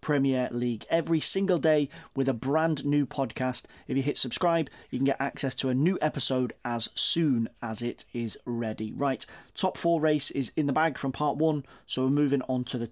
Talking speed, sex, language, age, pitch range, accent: 210 wpm, male, English, 30-49, 130-155 Hz, British